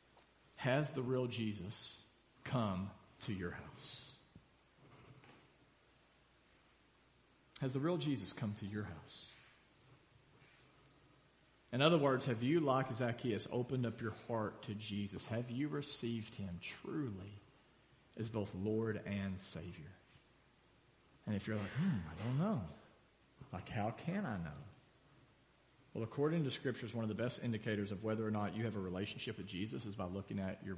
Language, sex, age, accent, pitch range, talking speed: English, male, 40-59, American, 100-125 Hz, 150 wpm